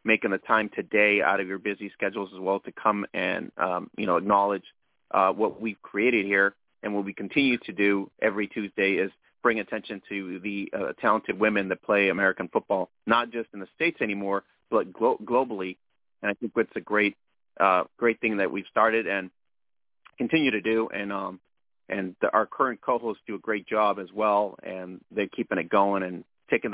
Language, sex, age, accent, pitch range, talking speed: English, male, 30-49, American, 100-115 Hz, 195 wpm